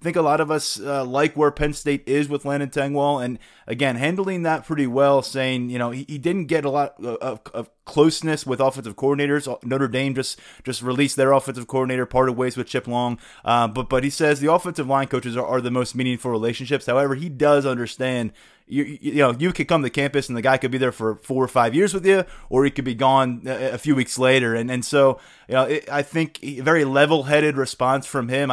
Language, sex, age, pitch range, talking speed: English, male, 20-39, 125-140 Hz, 240 wpm